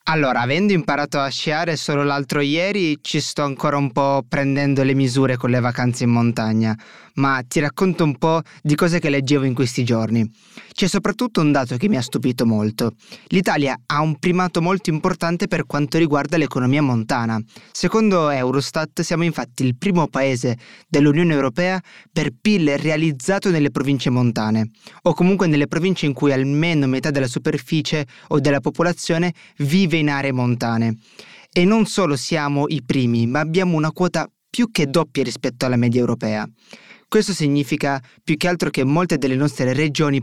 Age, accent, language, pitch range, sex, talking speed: 20-39, native, Italian, 135-170 Hz, male, 170 wpm